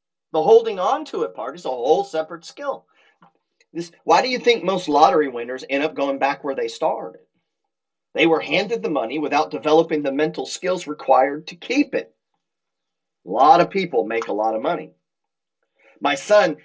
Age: 30-49